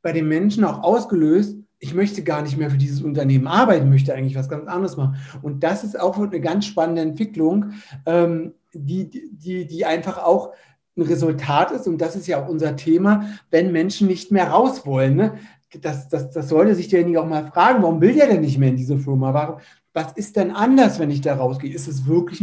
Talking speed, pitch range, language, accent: 210 wpm, 150-195 Hz, German, German